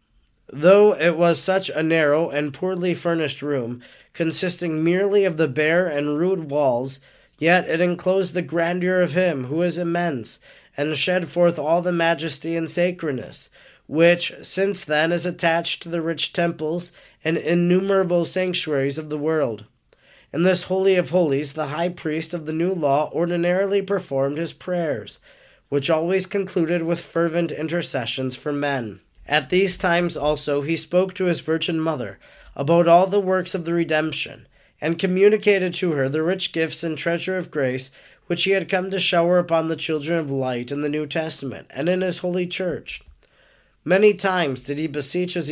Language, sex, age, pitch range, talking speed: English, male, 30-49, 150-180 Hz, 170 wpm